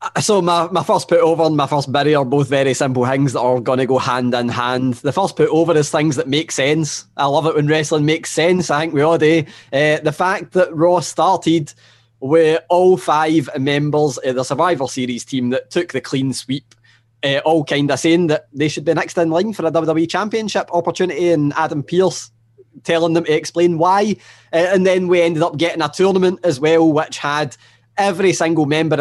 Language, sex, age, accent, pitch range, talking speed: English, male, 20-39, British, 130-170 Hz, 210 wpm